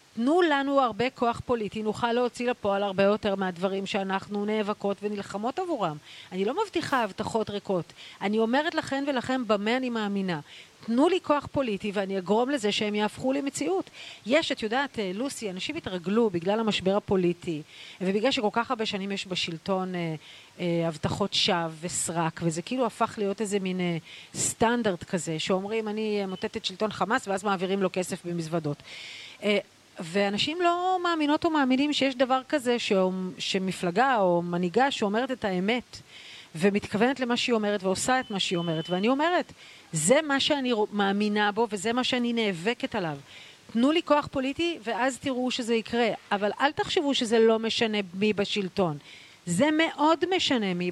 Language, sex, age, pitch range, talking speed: Hebrew, female, 40-59, 190-255 Hz, 150 wpm